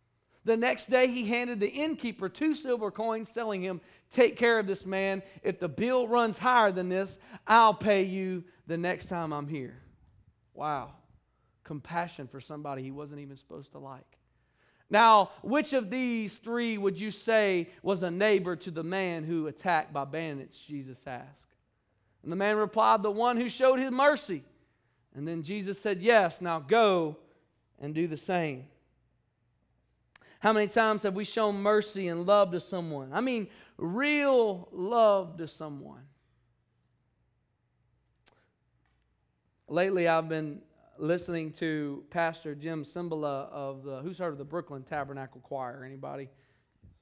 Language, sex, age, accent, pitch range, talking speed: English, male, 40-59, American, 140-205 Hz, 150 wpm